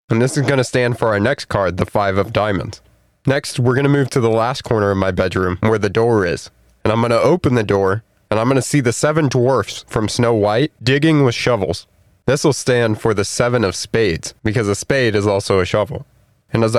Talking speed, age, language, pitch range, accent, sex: 245 wpm, 20-39, English, 110-140 Hz, American, male